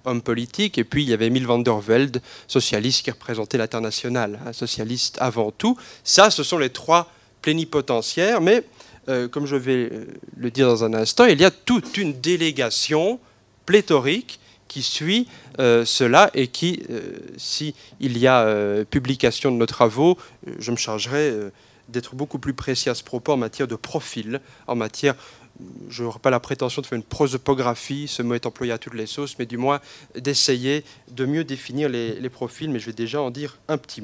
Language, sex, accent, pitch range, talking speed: French, male, French, 115-150 Hz, 195 wpm